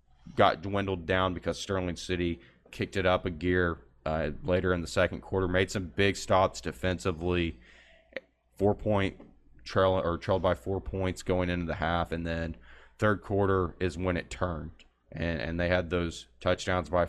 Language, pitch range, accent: English, 85-95 Hz, American